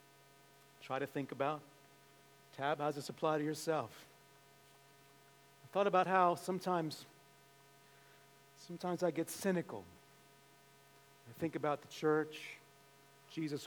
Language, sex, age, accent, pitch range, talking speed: English, male, 40-59, American, 140-170 Hz, 115 wpm